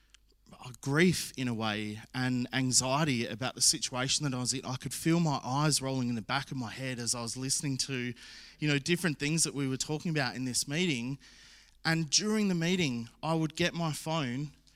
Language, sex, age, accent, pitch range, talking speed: English, male, 20-39, Australian, 125-160 Hz, 205 wpm